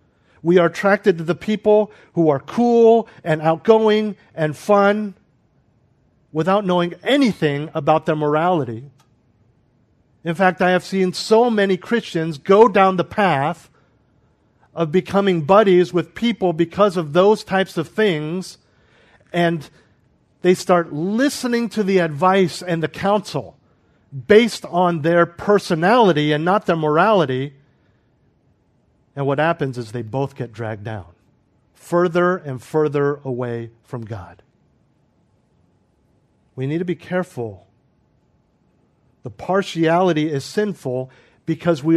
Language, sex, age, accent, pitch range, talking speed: English, male, 50-69, American, 145-190 Hz, 125 wpm